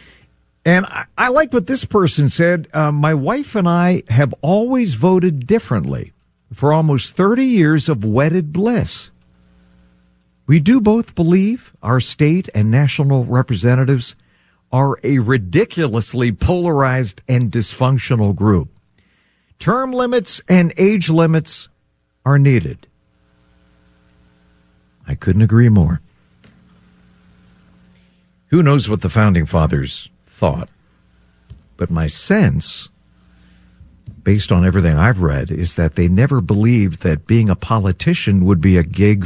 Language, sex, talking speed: English, male, 120 wpm